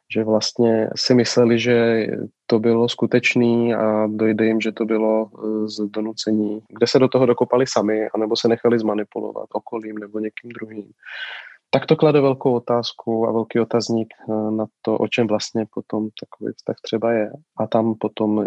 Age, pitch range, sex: 30-49, 105-120 Hz, male